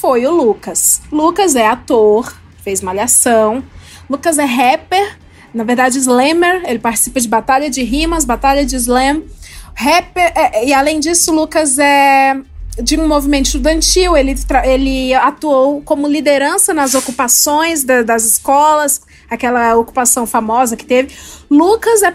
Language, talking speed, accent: Portuguese, 140 wpm, Brazilian